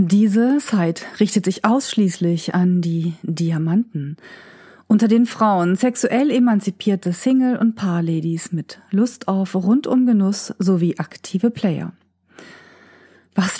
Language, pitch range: German, 175-230 Hz